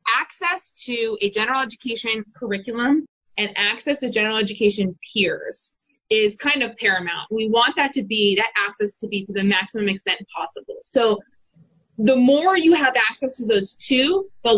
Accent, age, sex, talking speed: American, 20-39, female, 165 wpm